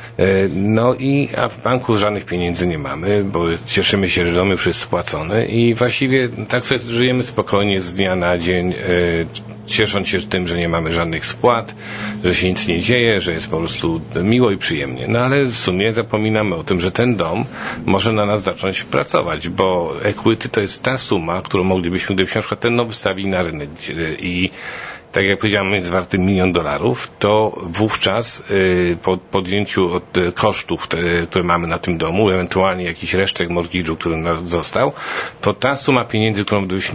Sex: male